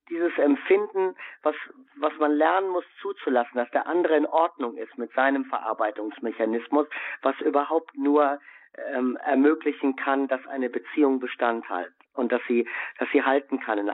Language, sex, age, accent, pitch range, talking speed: German, male, 50-69, German, 135-165 Hz, 155 wpm